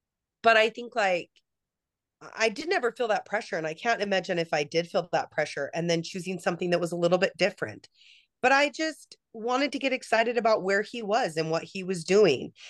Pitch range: 170-240 Hz